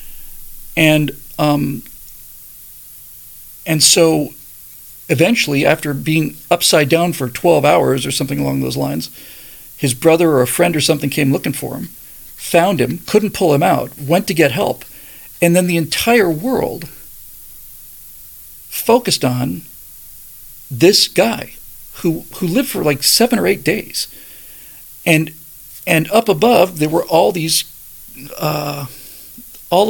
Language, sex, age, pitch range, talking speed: English, male, 40-59, 140-190 Hz, 130 wpm